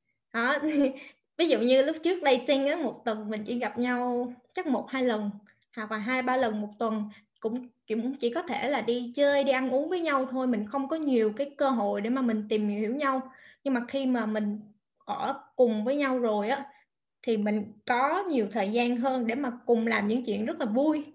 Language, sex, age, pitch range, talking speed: Vietnamese, female, 20-39, 225-275 Hz, 220 wpm